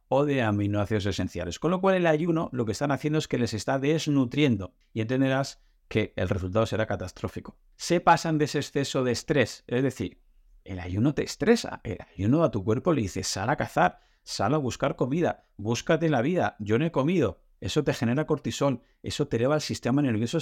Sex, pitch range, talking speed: male, 110-155 Hz, 205 wpm